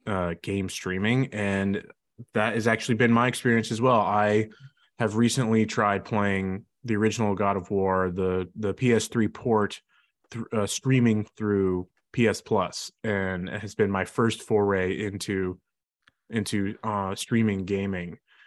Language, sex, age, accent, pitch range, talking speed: English, male, 20-39, American, 100-125 Hz, 145 wpm